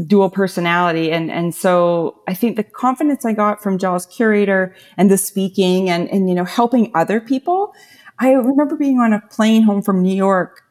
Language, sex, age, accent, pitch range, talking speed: English, female, 30-49, American, 185-240 Hz, 190 wpm